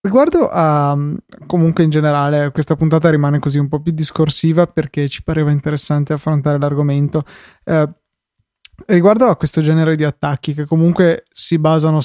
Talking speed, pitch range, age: 145 wpm, 145-160 Hz, 20-39